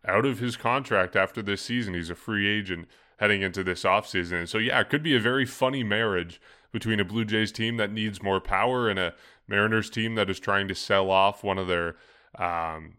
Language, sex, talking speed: English, male, 215 wpm